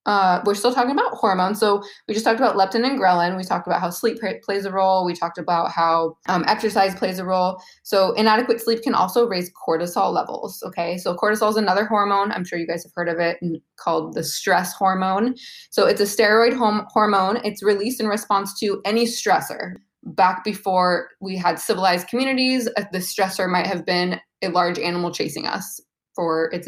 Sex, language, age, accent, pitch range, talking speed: female, English, 20-39, American, 175-225 Hz, 195 wpm